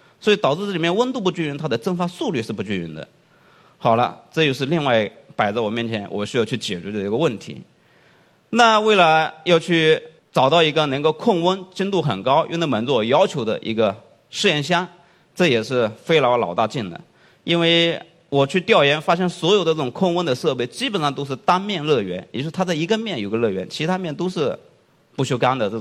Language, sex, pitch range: Chinese, male, 120-175 Hz